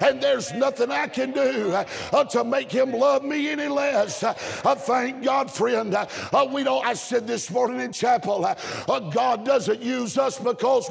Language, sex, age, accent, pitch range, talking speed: English, male, 50-69, American, 230-285 Hz, 180 wpm